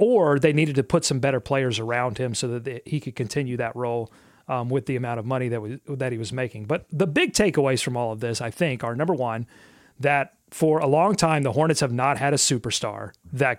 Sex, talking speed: male, 245 wpm